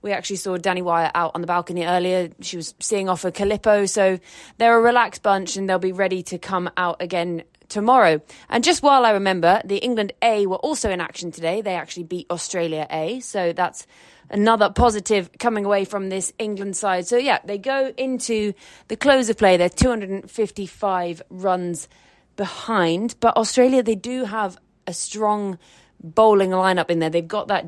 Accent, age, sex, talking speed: British, 20-39, female, 195 wpm